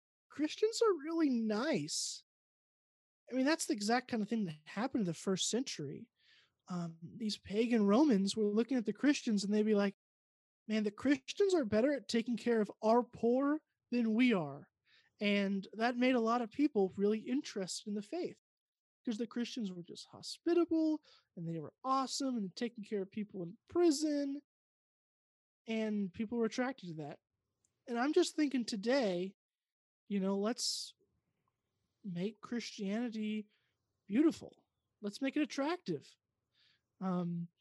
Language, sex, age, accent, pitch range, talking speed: English, male, 20-39, American, 190-255 Hz, 155 wpm